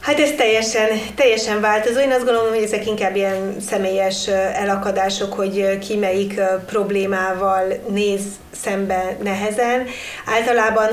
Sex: female